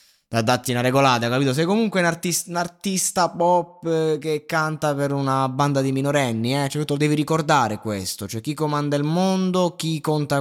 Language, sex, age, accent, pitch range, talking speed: Italian, male, 20-39, native, 115-160 Hz, 185 wpm